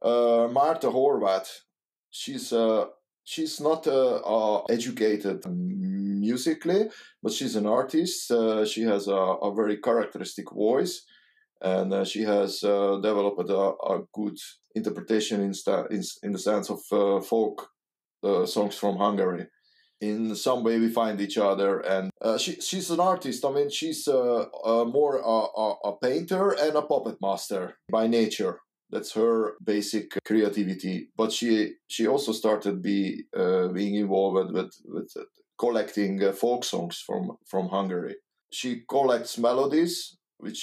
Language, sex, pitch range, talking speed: English, male, 100-135 Hz, 150 wpm